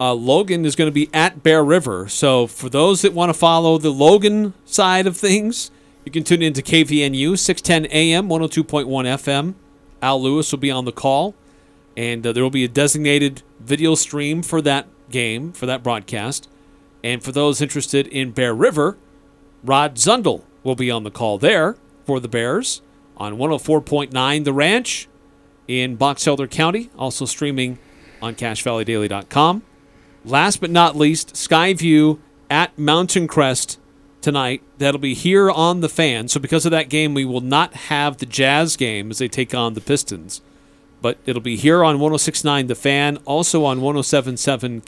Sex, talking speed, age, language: male, 170 wpm, 40-59, English